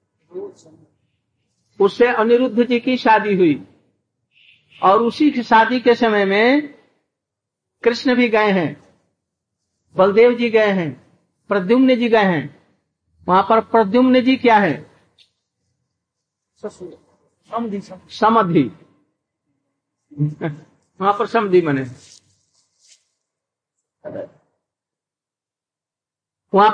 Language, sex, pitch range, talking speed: Hindi, male, 180-240 Hz, 85 wpm